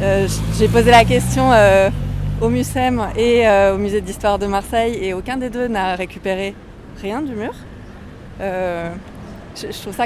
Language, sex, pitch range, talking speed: French, female, 190-240 Hz, 175 wpm